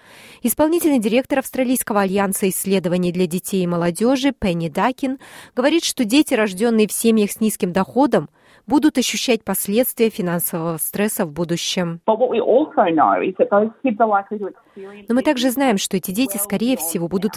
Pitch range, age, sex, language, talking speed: 180-235 Hz, 20-39, female, Russian, 130 wpm